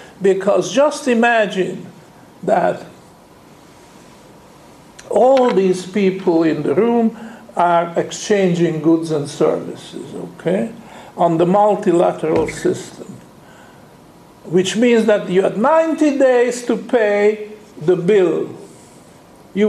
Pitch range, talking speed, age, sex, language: 180-235 Hz, 100 wpm, 60-79, male, English